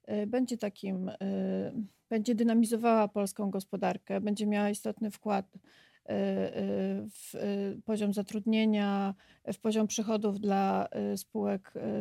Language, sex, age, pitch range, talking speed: Polish, female, 30-49, 200-225 Hz, 90 wpm